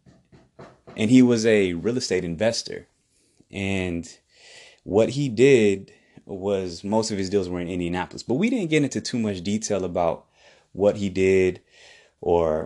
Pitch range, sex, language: 90-105 Hz, male, English